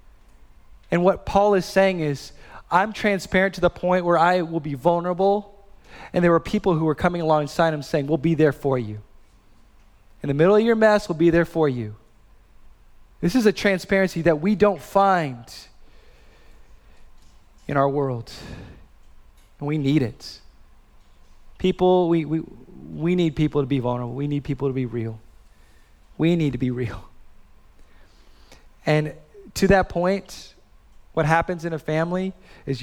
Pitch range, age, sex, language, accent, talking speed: 140-190 Hz, 20-39, male, English, American, 160 wpm